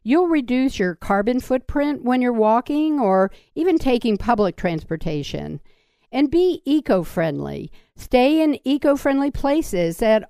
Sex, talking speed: female, 120 wpm